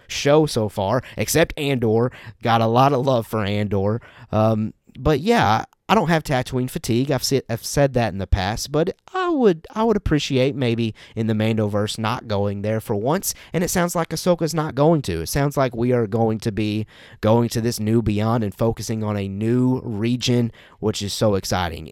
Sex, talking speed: male, 210 wpm